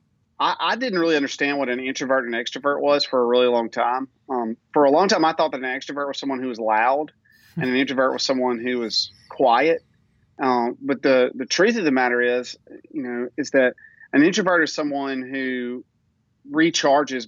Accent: American